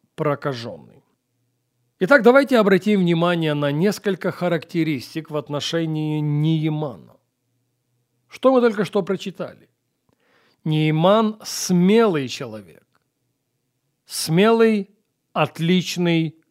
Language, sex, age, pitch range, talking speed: Russian, male, 40-59, 135-200 Hz, 75 wpm